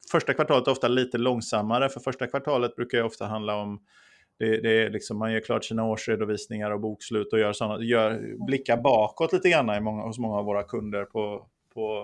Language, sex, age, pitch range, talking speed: Swedish, male, 30-49, 110-130 Hz, 210 wpm